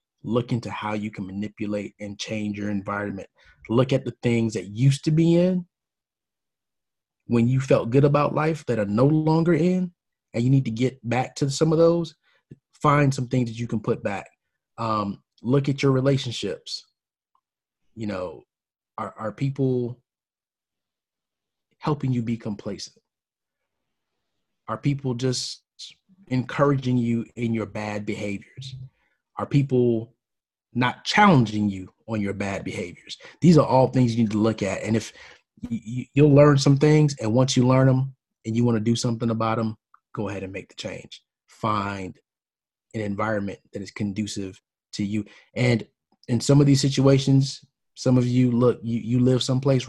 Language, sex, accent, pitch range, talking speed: English, male, American, 110-135 Hz, 165 wpm